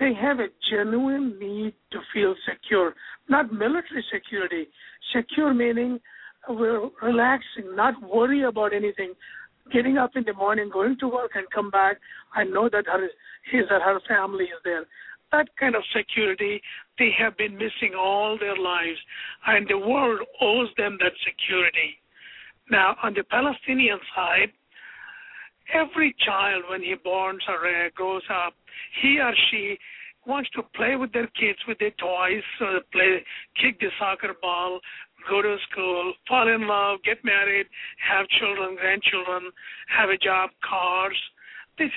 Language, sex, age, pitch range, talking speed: English, male, 60-79, 190-245 Hz, 150 wpm